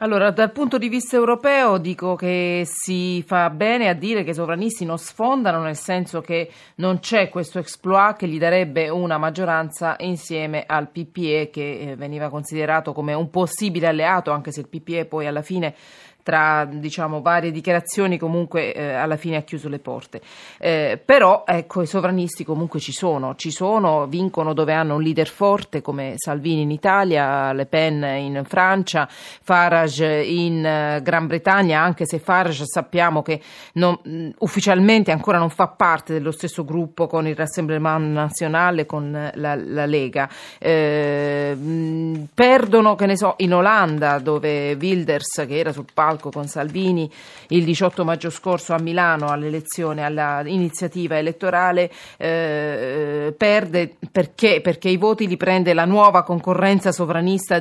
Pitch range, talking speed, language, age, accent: 155-180 Hz, 150 wpm, Italian, 30-49, native